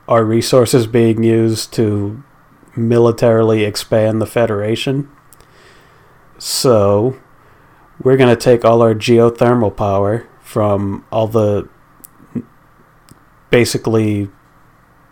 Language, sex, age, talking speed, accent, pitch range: English, male, 40-59, 85 wpm, American, 105-125 Hz